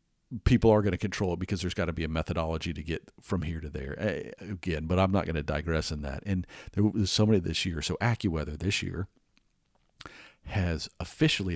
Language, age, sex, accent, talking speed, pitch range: English, 50-69, male, American, 215 wpm, 80-100 Hz